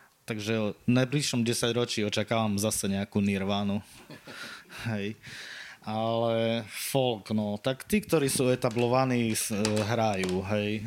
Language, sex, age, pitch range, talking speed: Slovak, male, 20-39, 105-120 Hz, 110 wpm